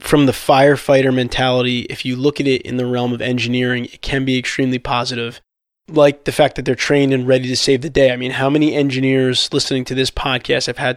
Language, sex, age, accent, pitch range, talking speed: English, male, 20-39, American, 125-145 Hz, 230 wpm